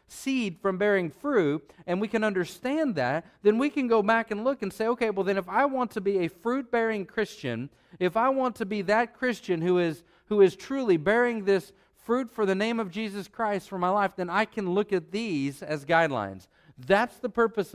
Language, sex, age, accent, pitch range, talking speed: English, male, 50-69, American, 160-210 Hz, 220 wpm